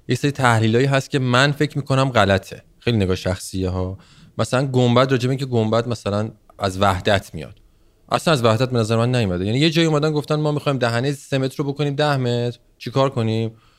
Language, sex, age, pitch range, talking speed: Persian, male, 30-49, 100-140 Hz, 190 wpm